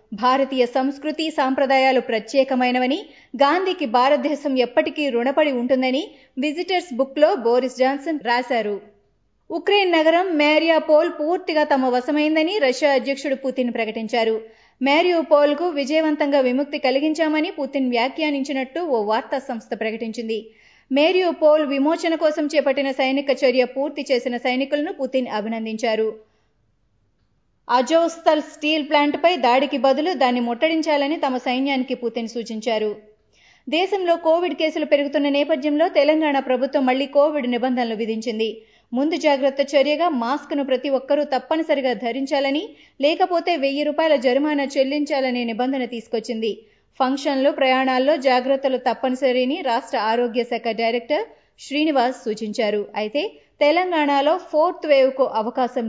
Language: Telugu